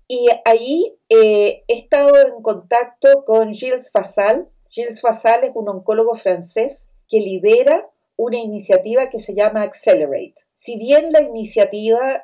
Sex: female